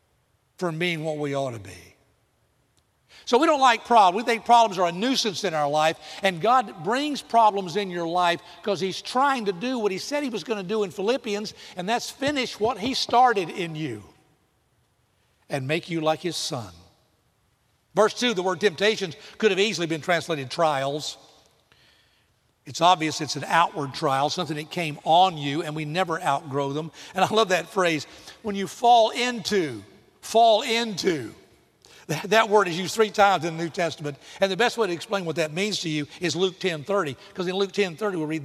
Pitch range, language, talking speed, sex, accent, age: 155-210 Hz, English, 200 wpm, male, American, 60-79